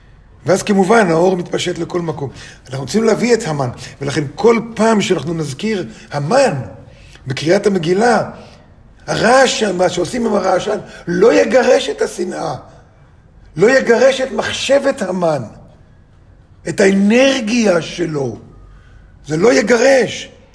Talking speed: 115 wpm